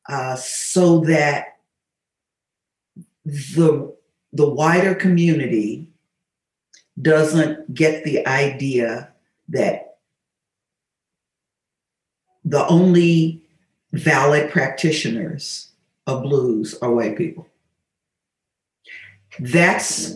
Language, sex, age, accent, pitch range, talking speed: English, female, 50-69, American, 120-165 Hz, 65 wpm